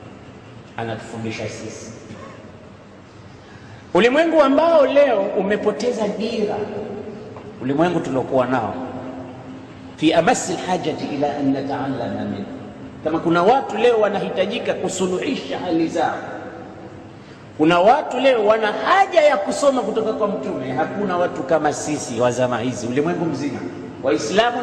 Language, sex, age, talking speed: Swahili, male, 50-69, 105 wpm